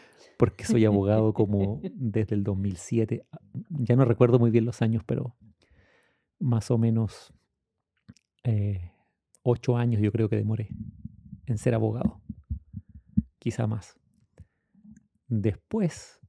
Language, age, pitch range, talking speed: English, 30-49, 110-125 Hz, 115 wpm